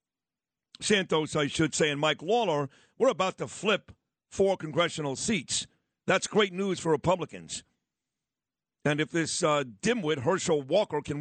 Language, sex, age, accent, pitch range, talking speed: English, male, 50-69, American, 150-185 Hz, 145 wpm